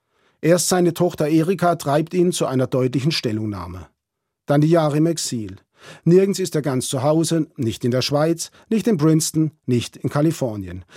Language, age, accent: German, 50-69, German